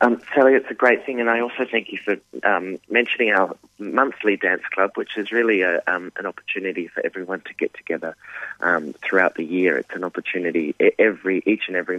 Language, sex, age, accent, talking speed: English, male, 20-39, Australian, 205 wpm